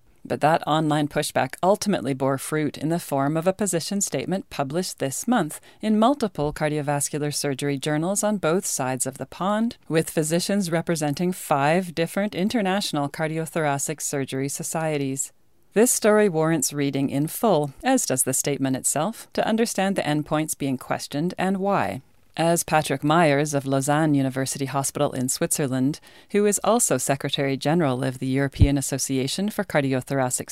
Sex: female